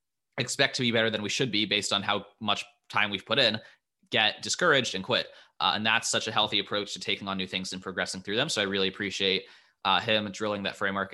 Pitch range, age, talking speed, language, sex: 100-115 Hz, 20-39, 245 wpm, English, male